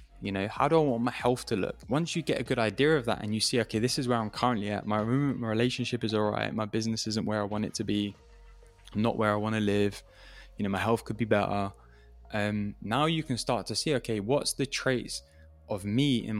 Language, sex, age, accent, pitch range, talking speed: English, male, 10-29, British, 105-125 Hz, 260 wpm